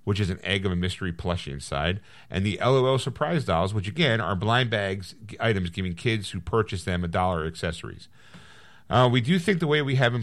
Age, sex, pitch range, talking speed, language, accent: 40-59, male, 90-120 Hz, 215 wpm, English, American